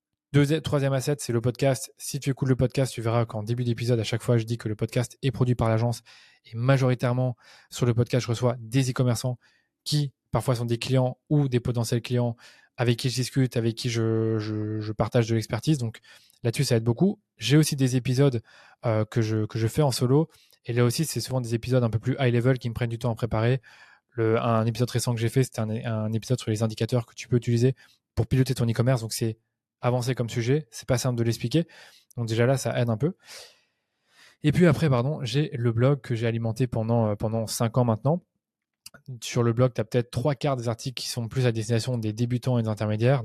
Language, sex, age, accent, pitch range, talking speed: French, male, 20-39, French, 115-130 Hz, 230 wpm